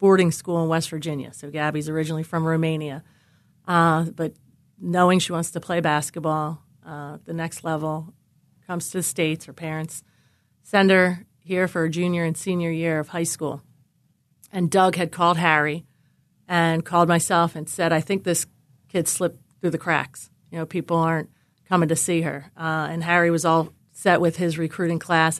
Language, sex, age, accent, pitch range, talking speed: English, female, 30-49, American, 155-180 Hz, 180 wpm